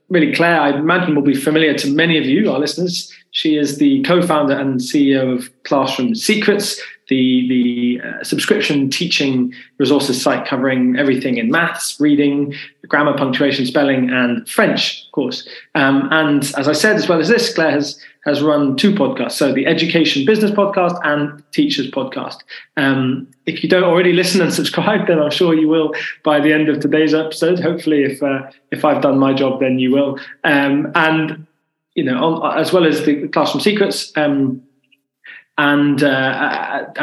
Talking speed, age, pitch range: 175 wpm, 20-39, 140-175 Hz